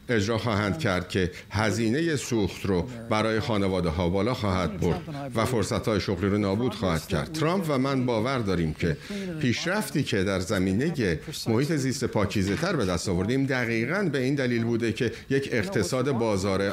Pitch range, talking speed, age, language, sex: 100-135 Hz, 160 wpm, 50-69, Persian, male